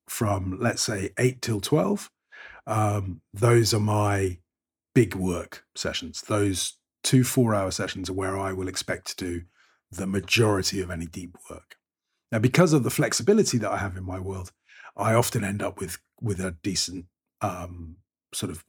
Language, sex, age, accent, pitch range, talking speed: English, male, 40-59, British, 95-115 Hz, 165 wpm